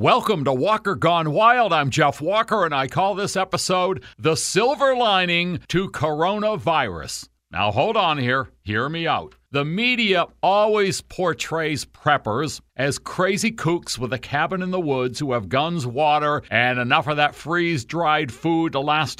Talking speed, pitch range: 165 wpm, 125-185 Hz